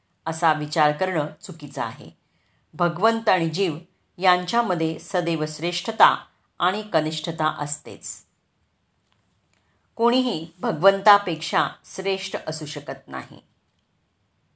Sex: female